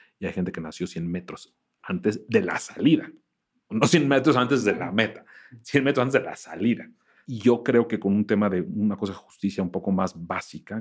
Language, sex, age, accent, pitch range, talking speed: Spanish, male, 40-59, Mexican, 85-110 Hz, 220 wpm